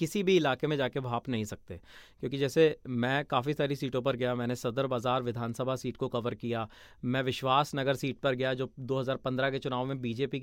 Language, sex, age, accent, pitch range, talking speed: Hindi, male, 30-49, native, 130-165 Hz, 205 wpm